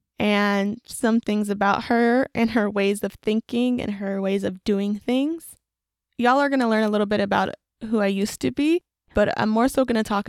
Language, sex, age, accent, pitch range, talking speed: English, female, 20-39, American, 200-235 Hz, 215 wpm